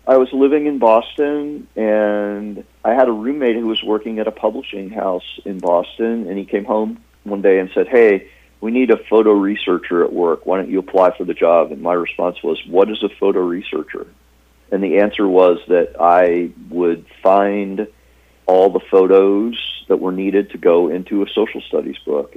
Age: 40-59